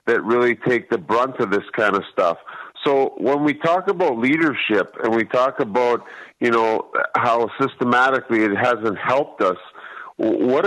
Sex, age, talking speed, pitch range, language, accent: male, 50-69, 165 wpm, 110-150 Hz, English, American